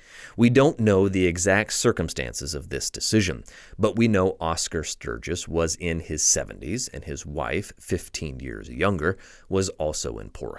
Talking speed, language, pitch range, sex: 160 wpm, English, 80-105 Hz, male